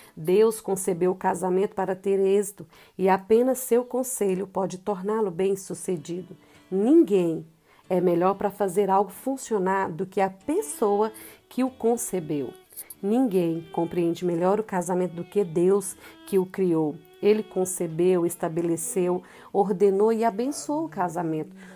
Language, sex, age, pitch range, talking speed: Portuguese, female, 50-69, 180-215 Hz, 130 wpm